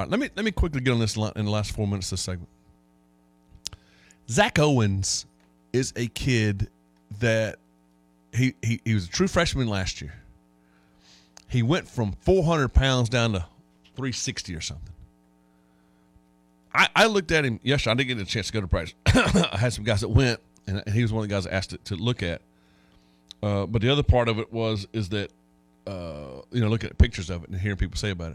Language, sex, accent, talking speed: English, male, American, 210 wpm